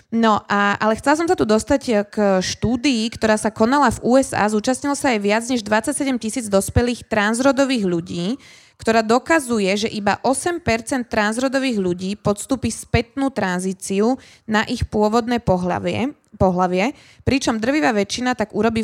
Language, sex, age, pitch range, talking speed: Slovak, female, 20-39, 200-245 Hz, 145 wpm